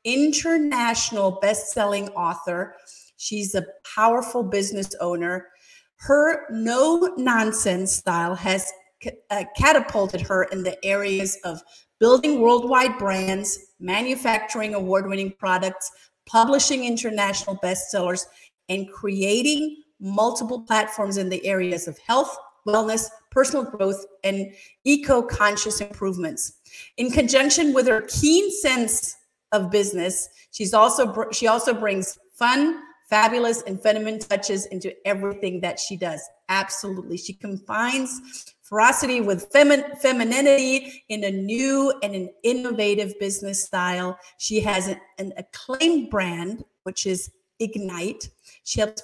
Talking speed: 115 wpm